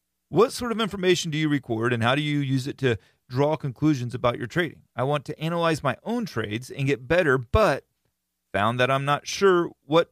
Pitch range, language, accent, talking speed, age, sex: 110-155 Hz, English, American, 215 wpm, 40-59, male